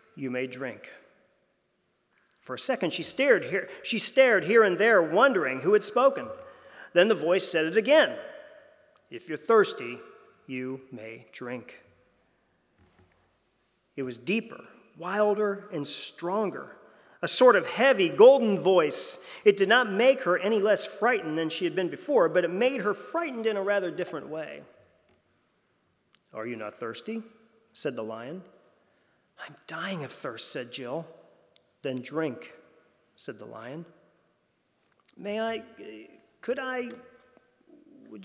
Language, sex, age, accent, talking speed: English, male, 40-59, American, 140 wpm